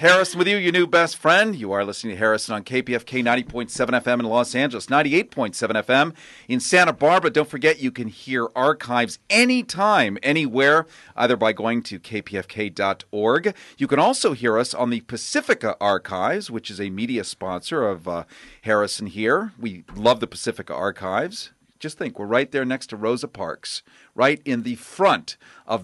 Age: 40-59